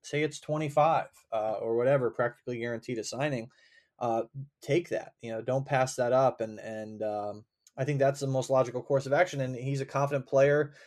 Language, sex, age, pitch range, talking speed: English, male, 20-39, 120-145 Hz, 200 wpm